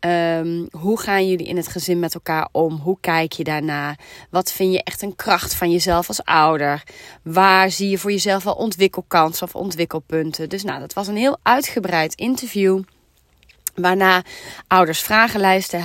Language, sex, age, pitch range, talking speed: Dutch, female, 30-49, 165-215 Hz, 165 wpm